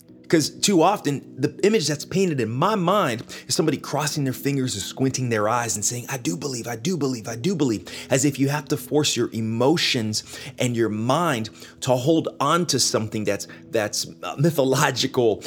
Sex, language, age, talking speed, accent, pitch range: male, English, 30-49, 190 wpm, American, 120-160 Hz